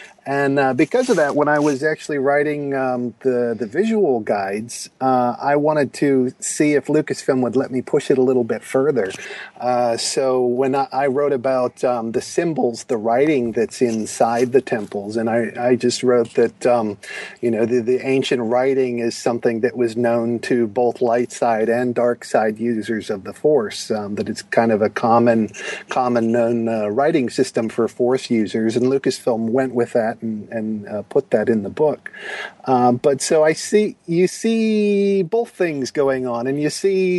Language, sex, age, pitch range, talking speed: English, male, 40-59, 120-150 Hz, 190 wpm